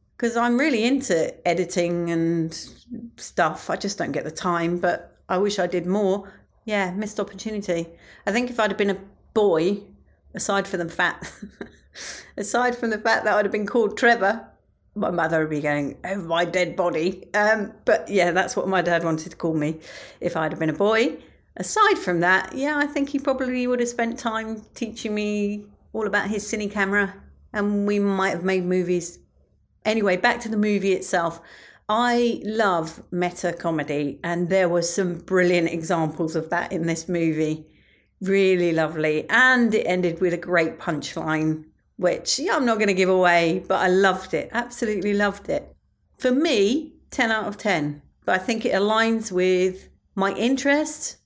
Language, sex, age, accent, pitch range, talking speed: English, female, 40-59, British, 175-220 Hz, 175 wpm